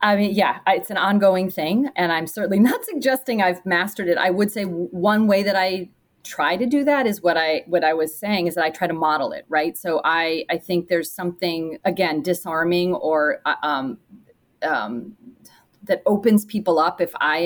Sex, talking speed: female, 200 wpm